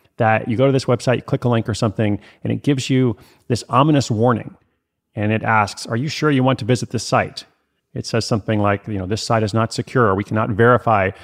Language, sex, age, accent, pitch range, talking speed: English, male, 30-49, American, 100-130 Hz, 240 wpm